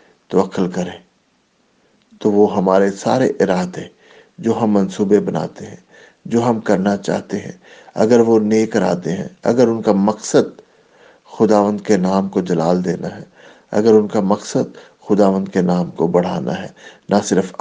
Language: English